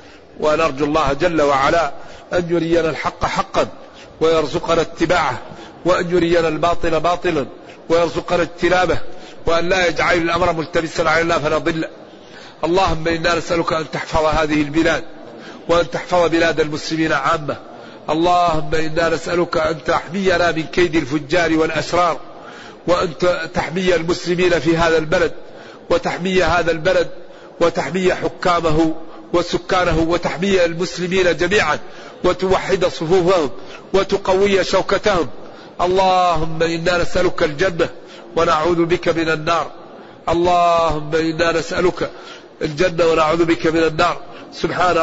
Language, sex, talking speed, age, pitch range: Arabic, male, 110 wpm, 50-69, 160-175 Hz